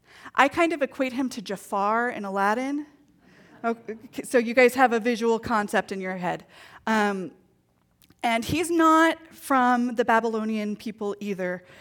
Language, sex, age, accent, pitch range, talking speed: English, female, 30-49, American, 185-245 Hz, 140 wpm